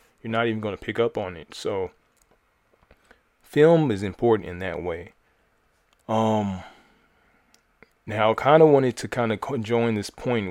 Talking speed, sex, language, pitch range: 155 wpm, male, English, 95-110 Hz